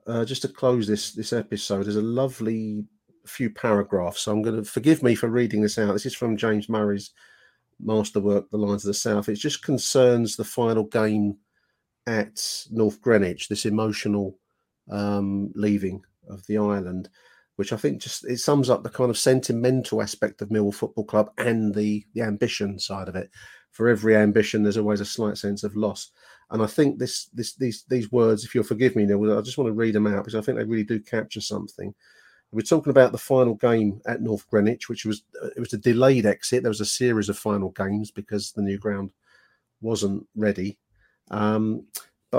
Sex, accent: male, British